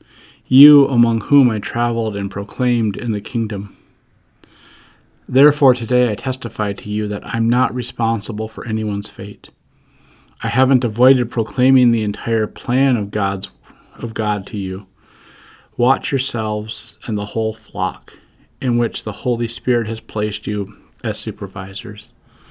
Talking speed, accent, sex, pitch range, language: 140 wpm, American, male, 105-125 Hz, English